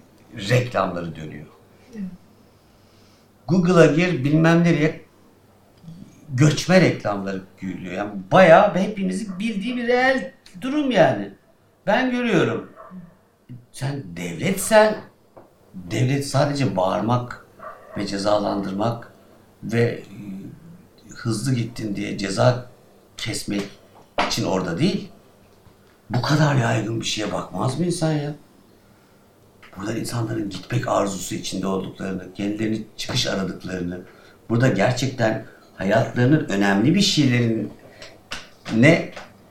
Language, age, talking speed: Turkish, 60-79, 90 wpm